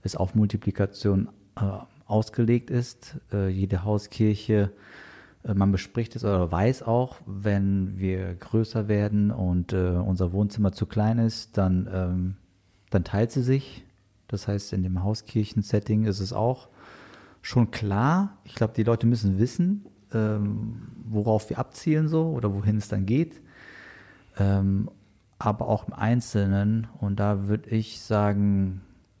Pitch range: 95-115 Hz